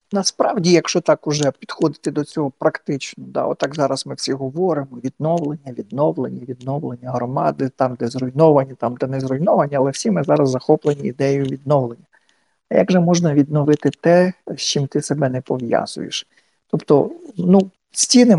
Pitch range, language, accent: 140-175 Hz, Ukrainian, native